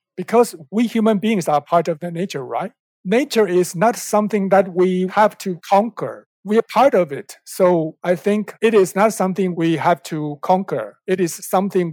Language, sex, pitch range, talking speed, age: English, male, 160-200 Hz, 190 wpm, 60-79